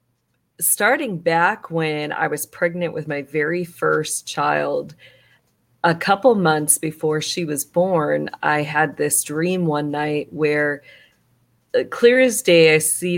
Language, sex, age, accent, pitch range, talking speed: English, female, 30-49, American, 155-180 Hz, 135 wpm